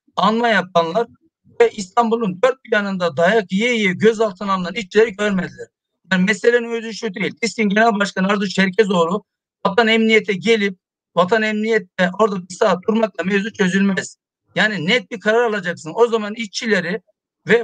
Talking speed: 145 wpm